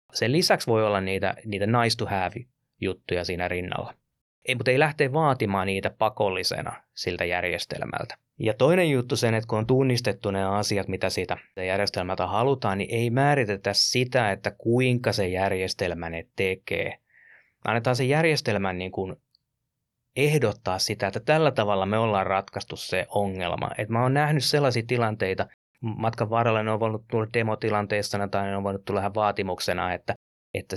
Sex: male